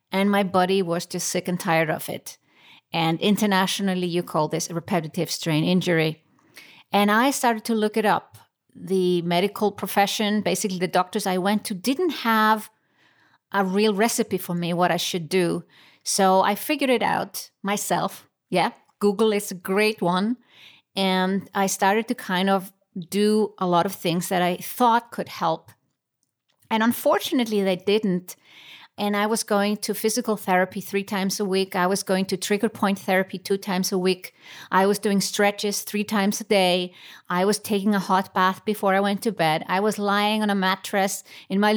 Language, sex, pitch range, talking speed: English, female, 185-215 Hz, 180 wpm